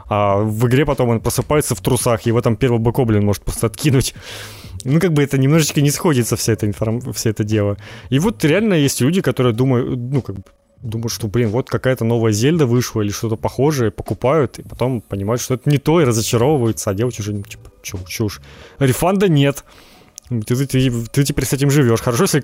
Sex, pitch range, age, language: male, 110-140 Hz, 20-39, Ukrainian